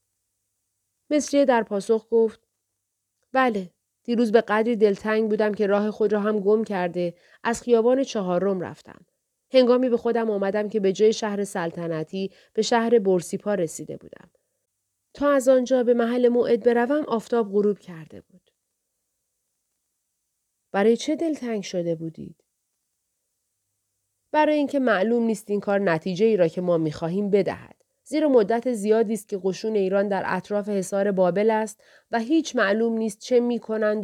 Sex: female